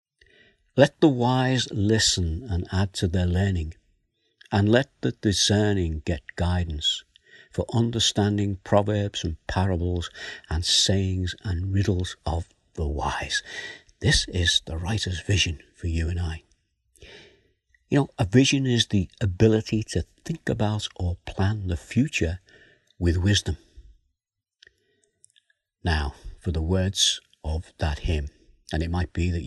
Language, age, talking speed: English, 60-79, 130 wpm